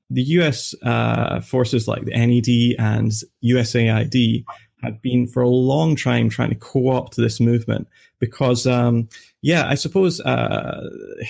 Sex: male